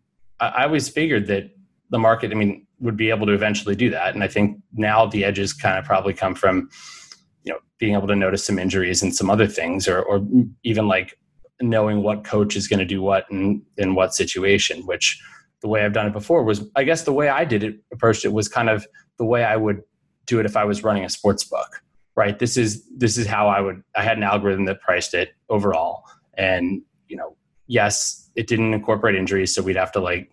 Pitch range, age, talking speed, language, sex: 100-115 Hz, 20-39, 230 wpm, English, male